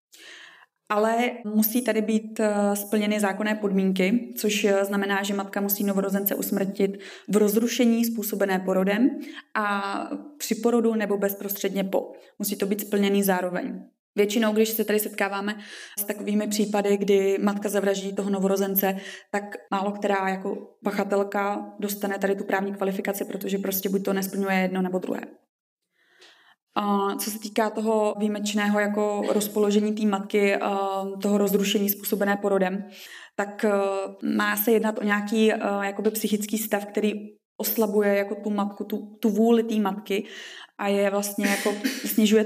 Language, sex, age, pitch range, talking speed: Czech, female, 20-39, 195-215 Hz, 130 wpm